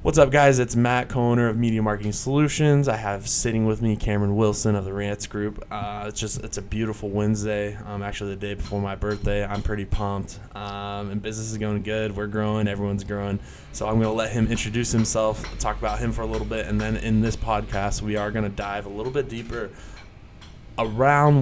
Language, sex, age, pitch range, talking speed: English, male, 20-39, 100-115 Hz, 220 wpm